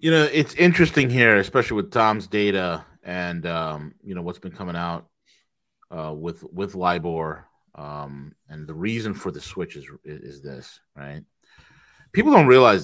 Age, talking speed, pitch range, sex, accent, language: 30-49, 165 wpm, 95-145 Hz, male, American, English